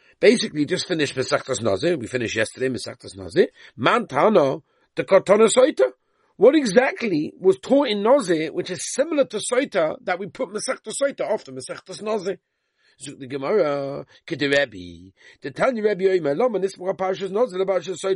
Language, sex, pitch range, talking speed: English, male, 145-245 Hz, 120 wpm